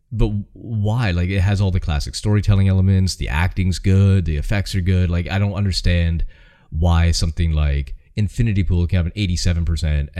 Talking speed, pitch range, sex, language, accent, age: 175 wpm, 80-100 Hz, male, English, American, 30-49